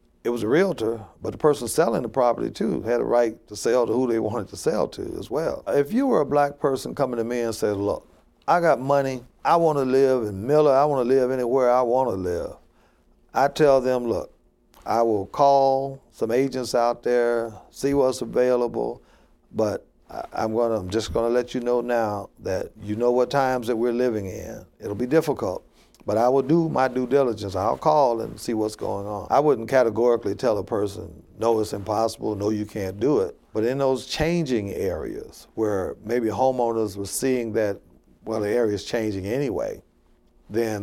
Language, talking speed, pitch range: English, 200 wpm, 105-130 Hz